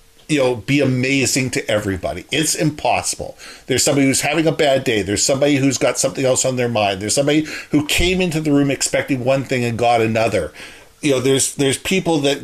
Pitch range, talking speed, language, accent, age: 110-140 Hz, 205 wpm, English, American, 50-69